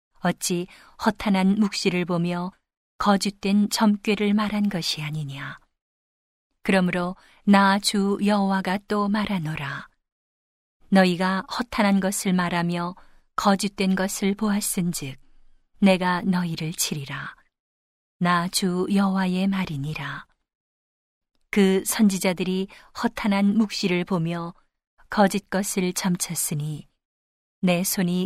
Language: Korean